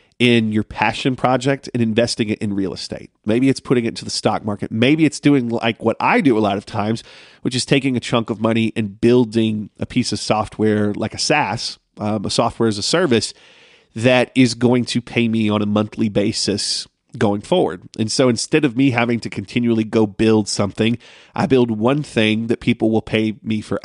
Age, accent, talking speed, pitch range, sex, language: 30-49, American, 210 wpm, 110-125 Hz, male, English